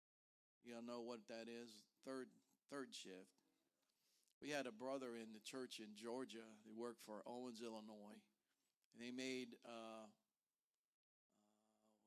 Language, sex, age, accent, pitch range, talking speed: English, male, 50-69, American, 110-135 Hz, 135 wpm